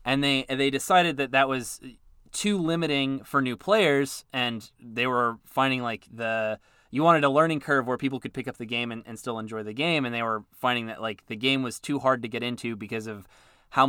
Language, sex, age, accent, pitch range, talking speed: English, male, 20-39, American, 115-140 Hz, 230 wpm